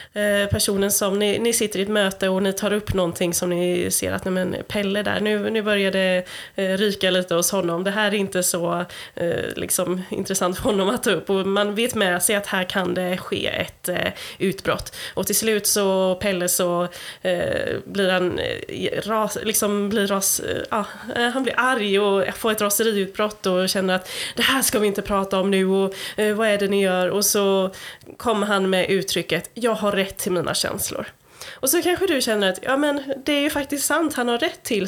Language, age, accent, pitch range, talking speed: Swedish, 20-39, native, 185-230 Hz, 215 wpm